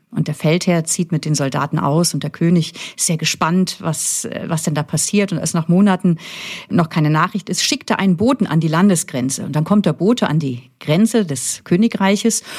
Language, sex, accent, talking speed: German, female, German, 210 wpm